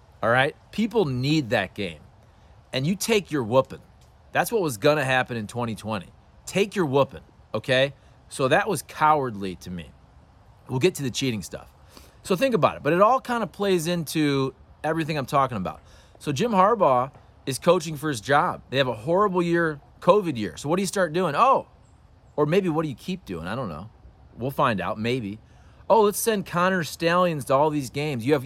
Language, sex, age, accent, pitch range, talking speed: English, male, 30-49, American, 115-160 Hz, 200 wpm